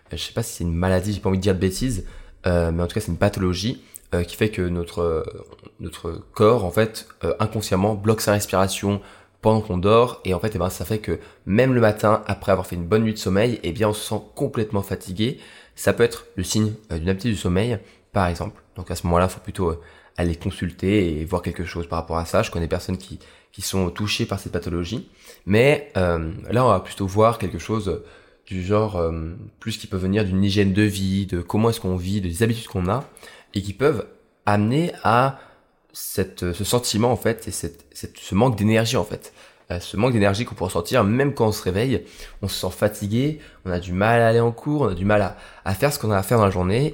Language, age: French, 20-39